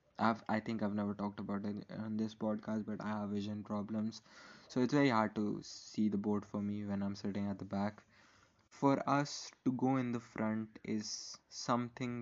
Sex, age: male, 20-39